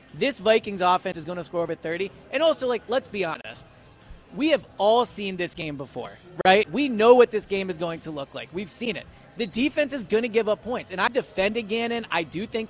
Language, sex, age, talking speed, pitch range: English, male, 20-39, 240 wpm, 175-225 Hz